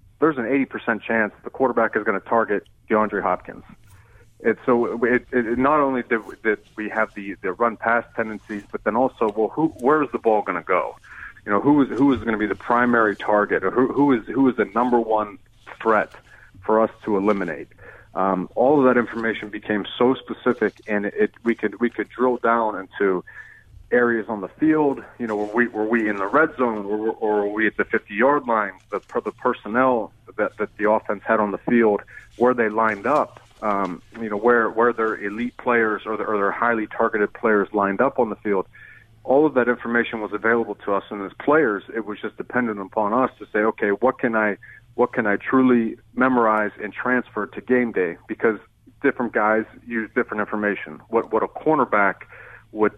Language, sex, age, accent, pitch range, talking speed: English, male, 40-59, American, 105-120 Hz, 215 wpm